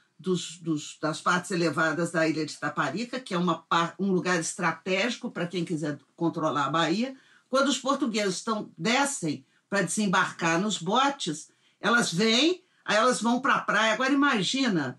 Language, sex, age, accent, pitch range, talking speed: Portuguese, female, 50-69, Brazilian, 175-260 Hz, 160 wpm